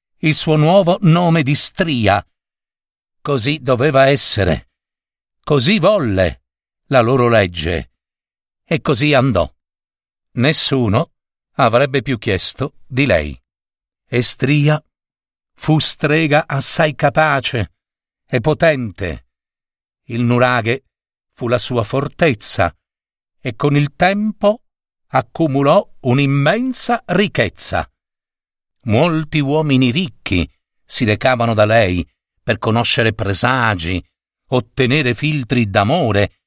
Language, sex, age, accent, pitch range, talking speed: Italian, male, 50-69, native, 105-155 Hz, 95 wpm